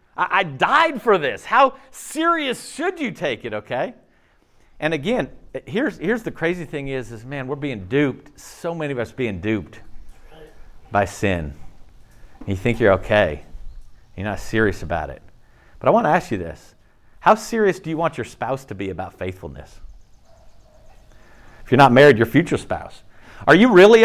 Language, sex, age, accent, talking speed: English, male, 40-59, American, 170 wpm